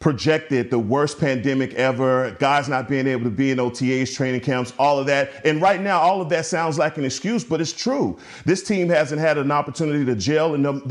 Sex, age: male, 40-59